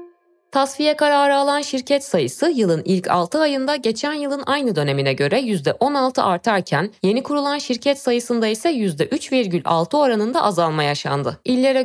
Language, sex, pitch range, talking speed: Turkish, female, 185-270 Hz, 130 wpm